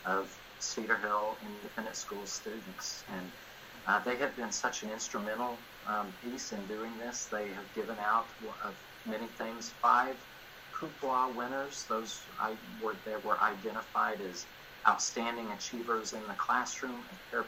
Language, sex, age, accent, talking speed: English, male, 50-69, American, 145 wpm